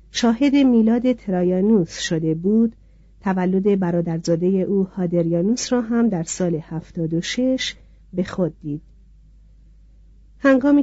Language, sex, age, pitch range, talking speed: Persian, female, 50-69, 170-230 Hz, 100 wpm